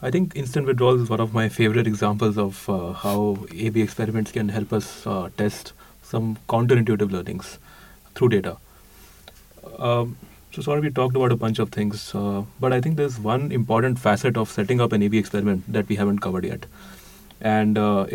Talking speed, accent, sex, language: 185 wpm, Indian, male, English